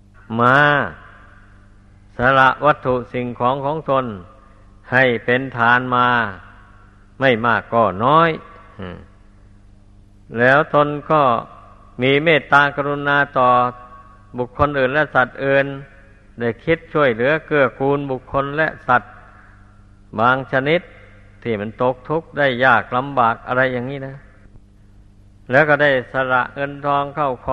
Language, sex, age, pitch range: Thai, male, 60-79, 100-145 Hz